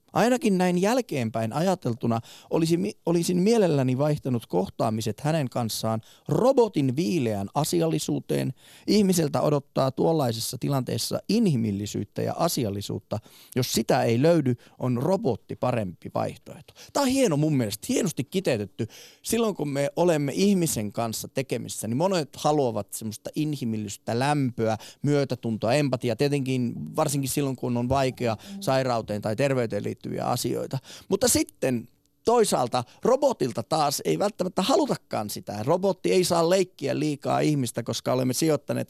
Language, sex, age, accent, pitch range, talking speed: Finnish, male, 30-49, native, 120-165 Hz, 120 wpm